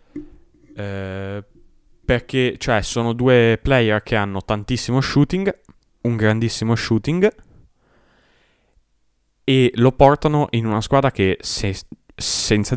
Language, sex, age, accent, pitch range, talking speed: Italian, male, 20-39, native, 95-120 Hz, 105 wpm